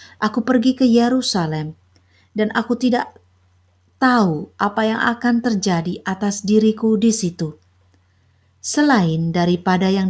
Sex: female